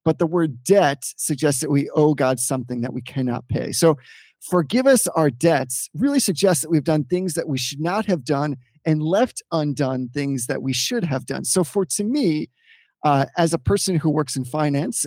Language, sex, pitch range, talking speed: English, male, 135-180 Hz, 205 wpm